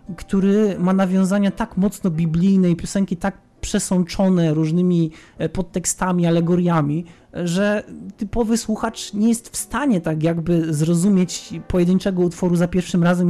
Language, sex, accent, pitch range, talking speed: Polish, male, native, 165-195 Hz, 125 wpm